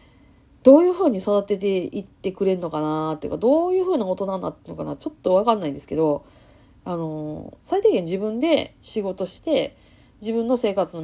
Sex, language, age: female, Japanese, 40-59